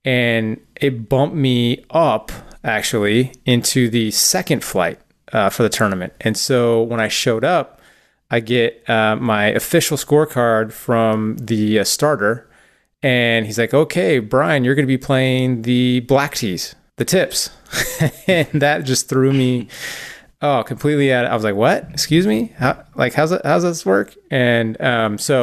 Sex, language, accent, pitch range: male, English, American, 110-140 Hz